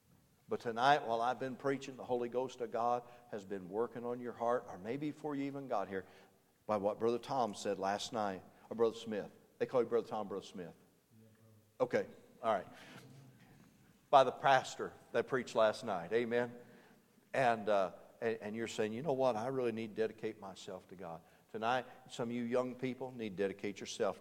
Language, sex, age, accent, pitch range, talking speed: English, male, 50-69, American, 105-130 Hz, 195 wpm